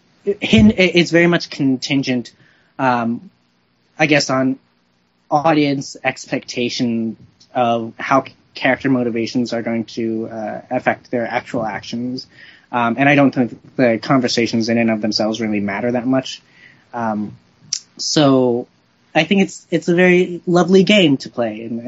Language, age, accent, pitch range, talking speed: English, 20-39, American, 115-150 Hz, 140 wpm